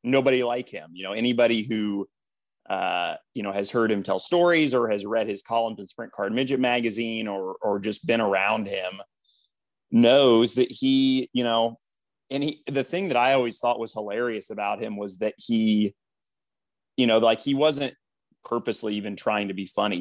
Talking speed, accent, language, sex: 185 wpm, American, English, male